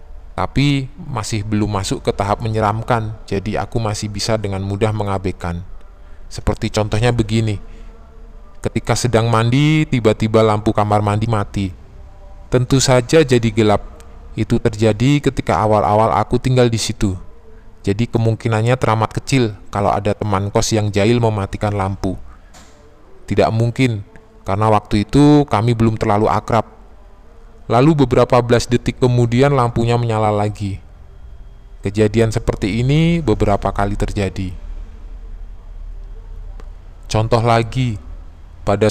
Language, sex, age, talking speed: Indonesian, male, 20-39, 115 wpm